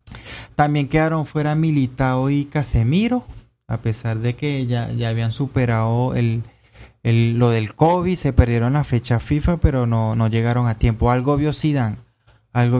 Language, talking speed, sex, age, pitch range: Spanish, 160 wpm, male, 20-39, 115-145 Hz